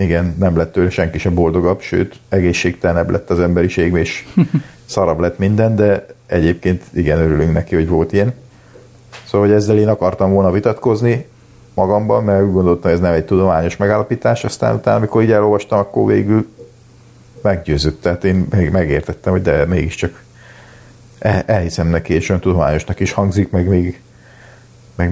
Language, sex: Hungarian, male